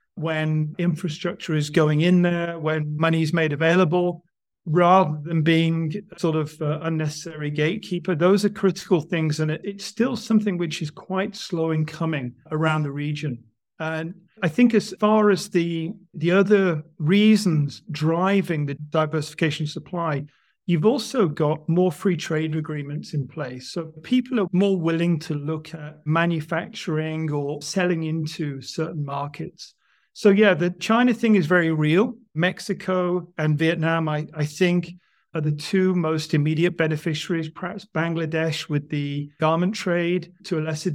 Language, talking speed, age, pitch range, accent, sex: English, 150 wpm, 40-59, 155-180 Hz, British, male